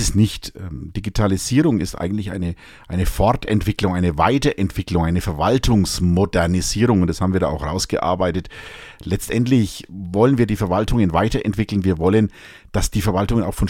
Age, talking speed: 50-69, 140 wpm